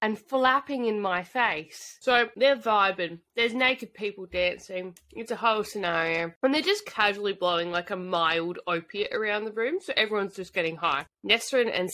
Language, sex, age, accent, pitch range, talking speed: English, female, 20-39, Australian, 185-230 Hz, 175 wpm